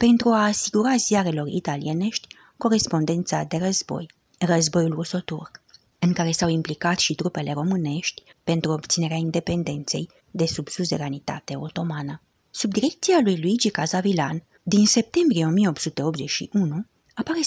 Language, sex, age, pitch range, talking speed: English, female, 30-49, 160-200 Hz, 115 wpm